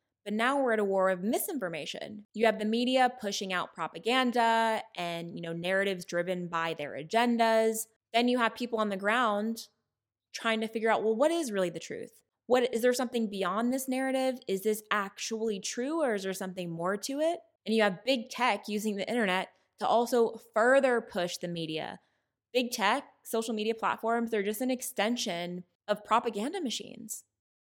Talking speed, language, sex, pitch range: 180 wpm, English, female, 185-235 Hz